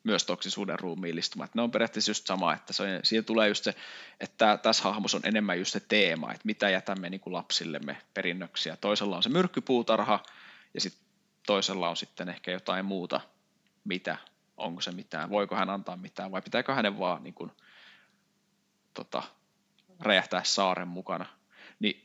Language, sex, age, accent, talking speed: Finnish, male, 20-39, native, 160 wpm